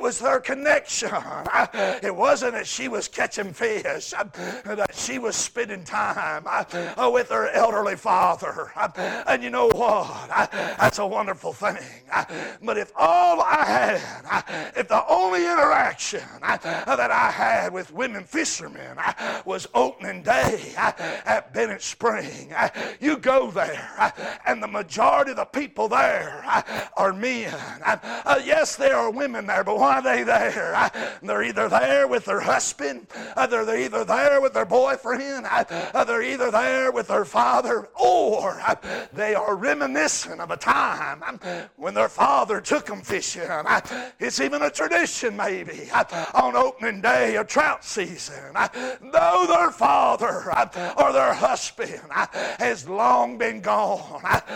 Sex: male